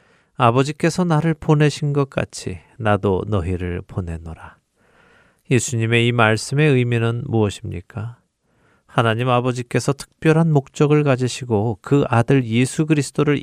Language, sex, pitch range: Korean, male, 100-130 Hz